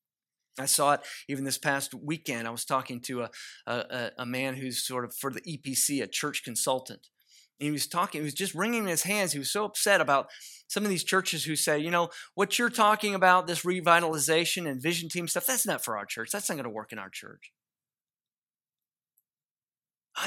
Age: 30-49